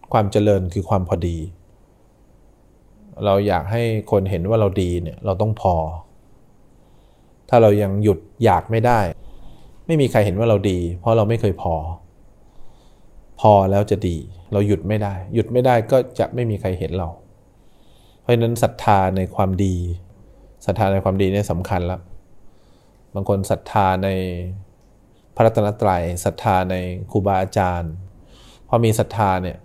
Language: English